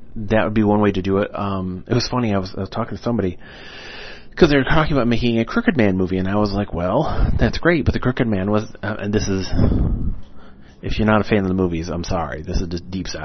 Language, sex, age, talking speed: English, male, 30-49, 265 wpm